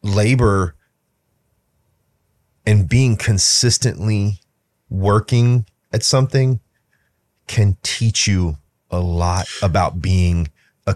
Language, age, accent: English, 30-49, American